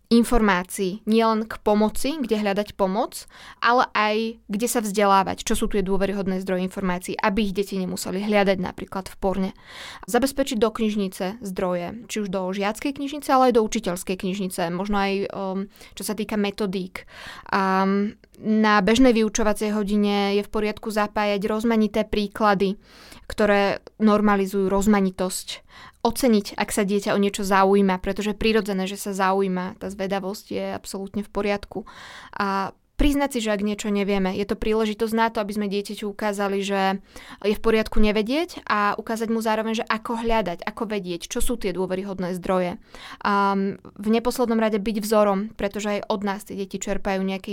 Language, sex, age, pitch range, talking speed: Slovak, female, 20-39, 195-220 Hz, 165 wpm